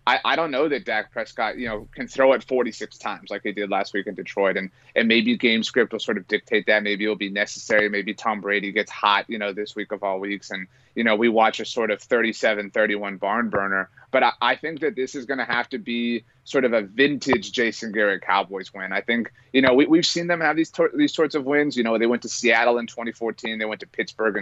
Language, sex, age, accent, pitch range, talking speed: English, male, 30-49, American, 110-130 Hz, 265 wpm